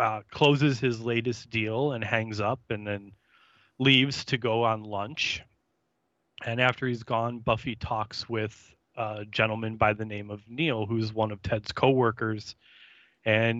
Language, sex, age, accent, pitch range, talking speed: English, male, 20-39, American, 105-120 Hz, 155 wpm